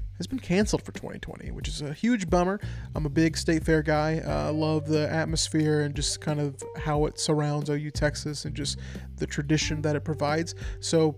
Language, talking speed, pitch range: English, 200 wpm, 145-165 Hz